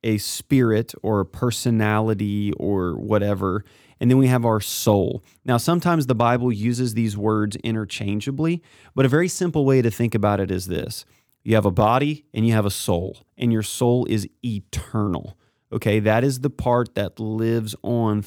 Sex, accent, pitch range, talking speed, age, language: male, American, 105-125 Hz, 175 wpm, 30-49, English